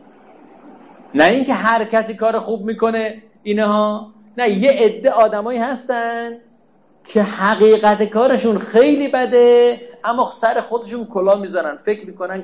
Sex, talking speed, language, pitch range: male, 125 wpm, Persian, 175-230 Hz